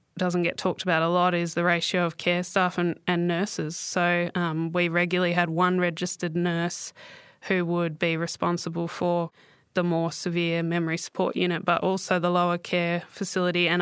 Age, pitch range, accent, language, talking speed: 20-39, 170-185 Hz, Australian, English, 180 wpm